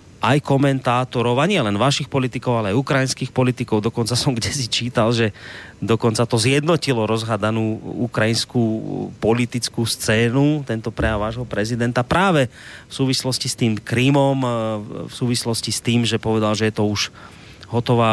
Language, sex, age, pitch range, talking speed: Slovak, male, 30-49, 110-140 Hz, 145 wpm